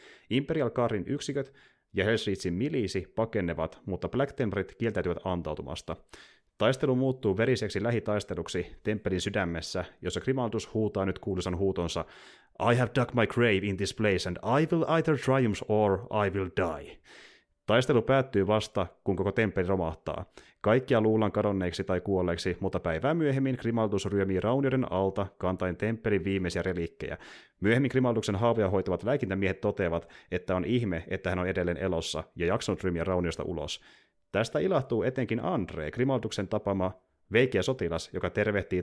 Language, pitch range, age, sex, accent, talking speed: Finnish, 90-115 Hz, 30-49, male, native, 140 wpm